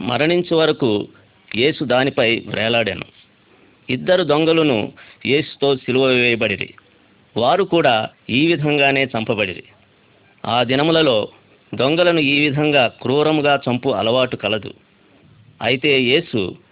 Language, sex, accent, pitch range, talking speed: Telugu, male, native, 120-160 Hz, 90 wpm